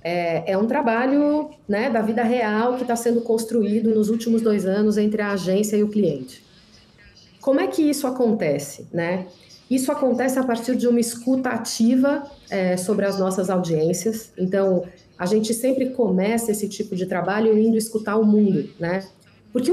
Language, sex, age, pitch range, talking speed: Portuguese, female, 40-59, 190-235 Hz, 165 wpm